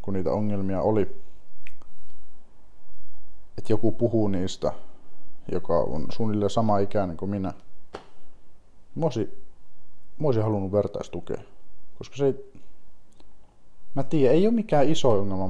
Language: Finnish